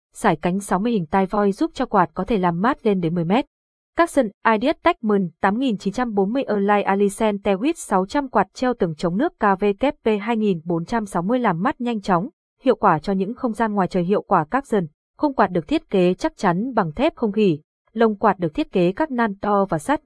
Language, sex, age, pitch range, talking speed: Vietnamese, female, 20-39, 185-240 Hz, 215 wpm